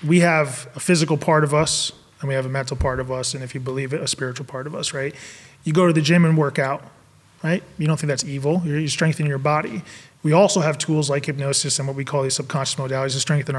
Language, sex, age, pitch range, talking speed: English, male, 20-39, 140-165 Hz, 265 wpm